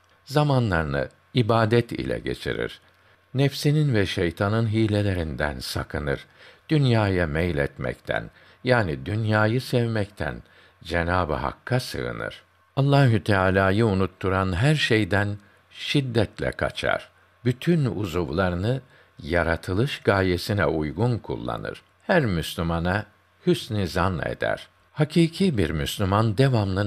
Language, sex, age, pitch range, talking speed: Turkish, male, 60-79, 85-115 Hz, 85 wpm